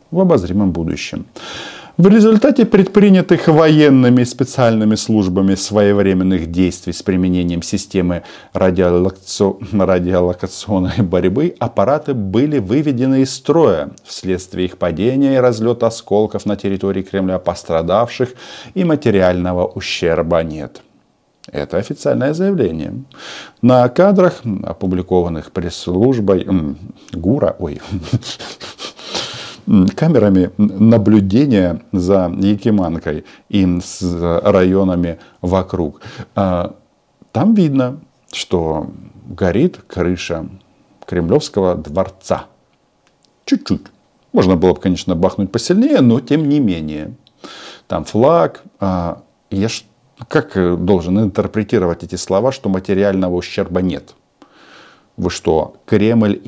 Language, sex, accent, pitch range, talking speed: Russian, male, native, 90-120 Hz, 90 wpm